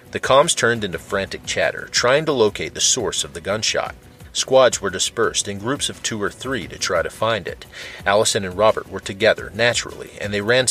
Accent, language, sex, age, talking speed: American, English, male, 40-59, 205 wpm